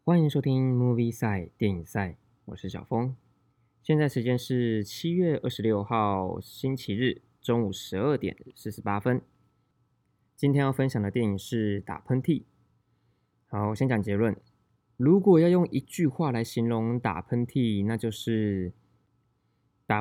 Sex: male